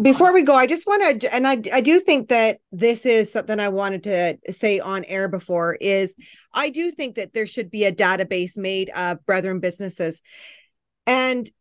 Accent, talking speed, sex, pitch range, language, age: American, 195 wpm, female, 195-260 Hz, English, 30-49